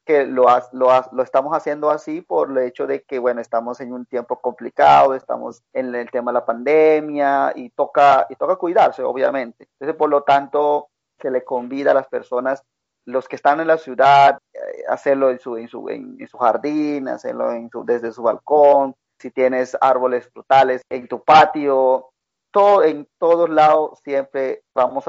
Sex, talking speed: male, 180 wpm